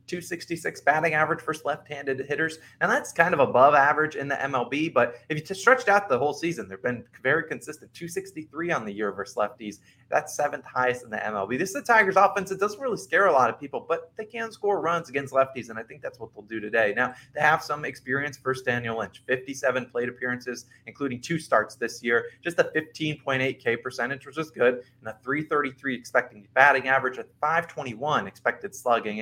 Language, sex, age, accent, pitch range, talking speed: English, male, 20-39, American, 125-165 Hz, 205 wpm